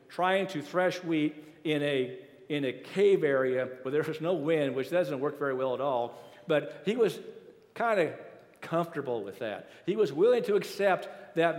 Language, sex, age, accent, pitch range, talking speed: English, male, 50-69, American, 130-190 Hz, 185 wpm